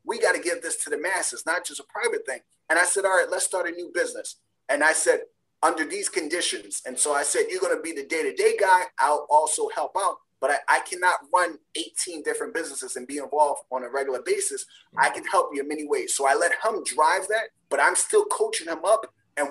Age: 30-49